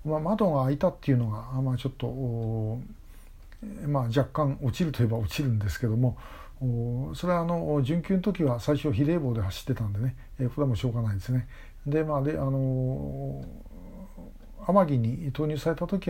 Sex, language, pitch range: male, Japanese, 120-155 Hz